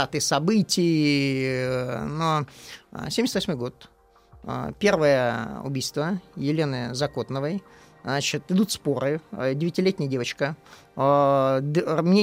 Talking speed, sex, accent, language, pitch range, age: 70 wpm, male, native, Russian, 140-190 Hz, 30-49